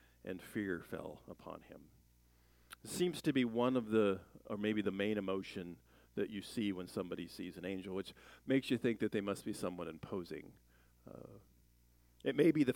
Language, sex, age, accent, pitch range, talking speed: English, male, 50-69, American, 90-130 Hz, 185 wpm